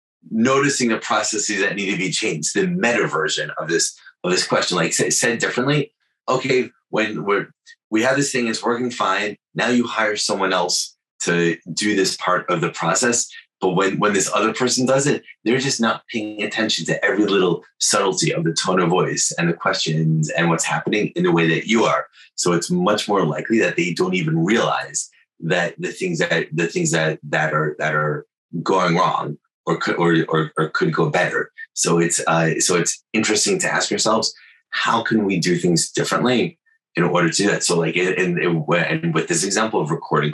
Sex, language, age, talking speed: male, English, 30-49, 200 wpm